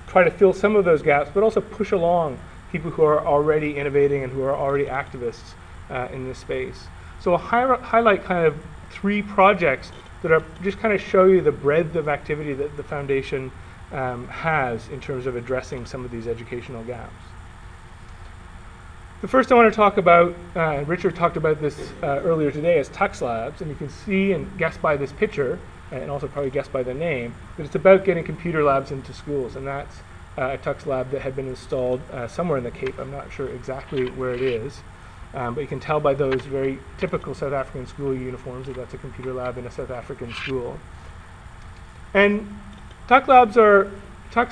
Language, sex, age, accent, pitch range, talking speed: English, male, 30-49, American, 125-165 Hz, 195 wpm